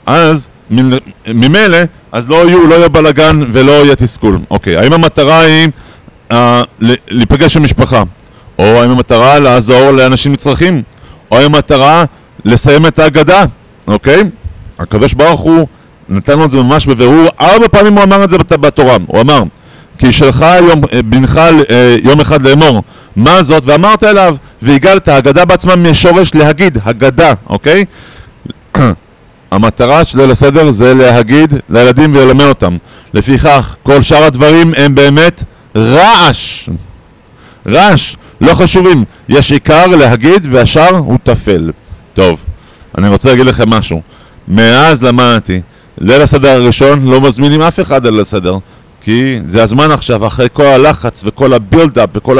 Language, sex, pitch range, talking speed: Hebrew, male, 120-155 Hz, 115 wpm